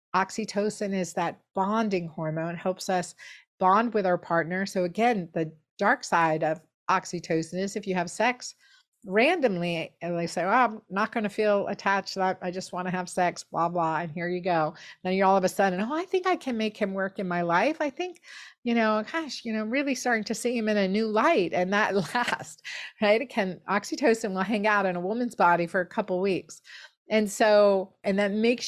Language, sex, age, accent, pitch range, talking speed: English, female, 50-69, American, 175-220 Hz, 215 wpm